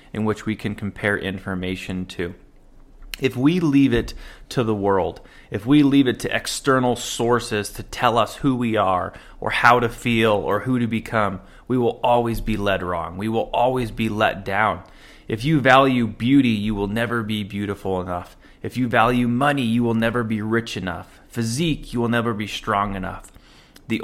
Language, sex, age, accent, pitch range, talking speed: English, male, 30-49, American, 100-120 Hz, 185 wpm